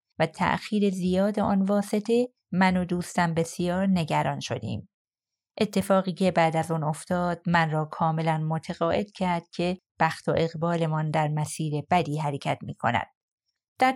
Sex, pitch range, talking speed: female, 165-205 Hz, 140 wpm